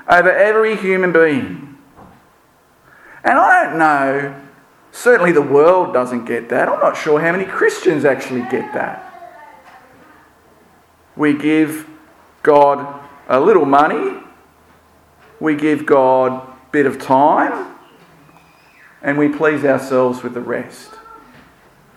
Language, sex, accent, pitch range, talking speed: English, male, Australian, 140-195 Hz, 115 wpm